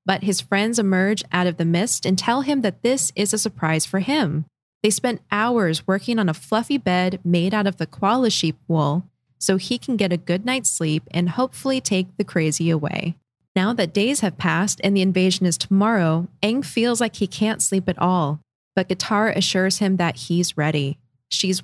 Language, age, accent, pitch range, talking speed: English, 20-39, American, 170-215 Hz, 200 wpm